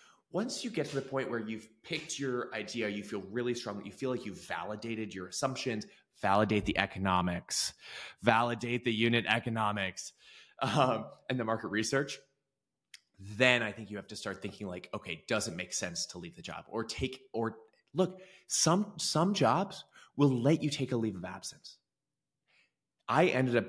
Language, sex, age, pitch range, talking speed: English, male, 20-39, 100-135 Hz, 175 wpm